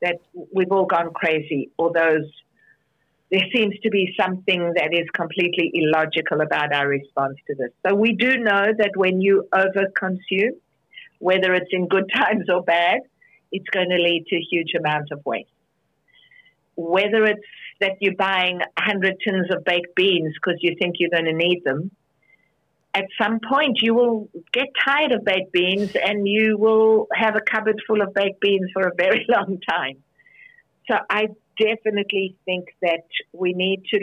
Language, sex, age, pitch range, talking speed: English, female, 50-69, 170-215 Hz, 170 wpm